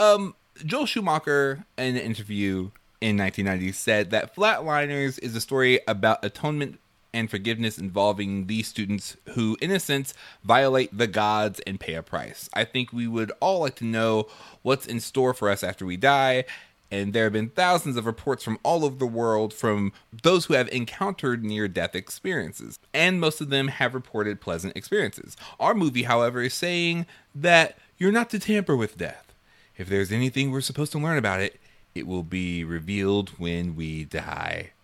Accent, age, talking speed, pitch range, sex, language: American, 30-49, 175 wpm, 105-150 Hz, male, English